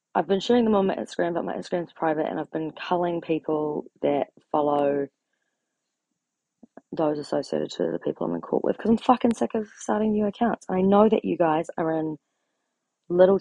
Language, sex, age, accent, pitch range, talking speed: English, female, 20-39, Australian, 160-235 Hz, 190 wpm